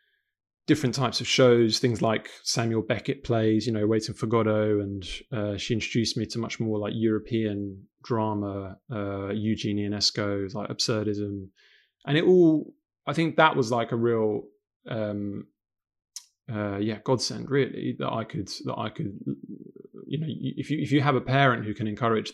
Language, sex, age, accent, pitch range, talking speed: English, male, 20-39, British, 105-130 Hz, 170 wpm